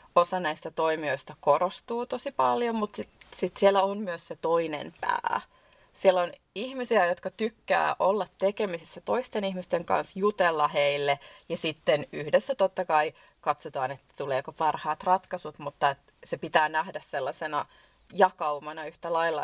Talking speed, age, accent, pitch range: 140 wpm, 30-49, native, 165-200 Hz